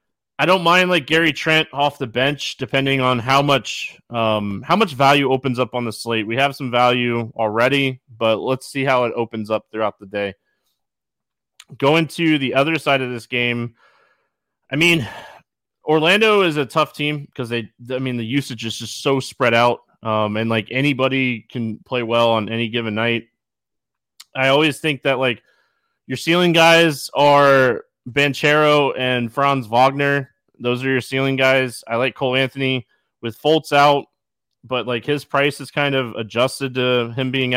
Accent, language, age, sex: American, English, 20-39, male